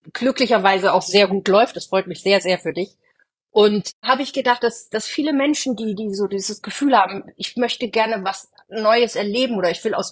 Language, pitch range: German, 170-230 Hz